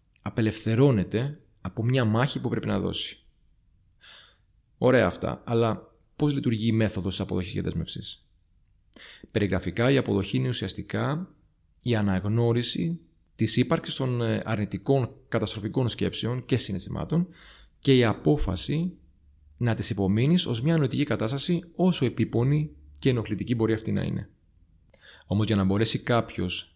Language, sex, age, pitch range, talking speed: Greek, male, 30-49, 95-130 Hz, 130 wpm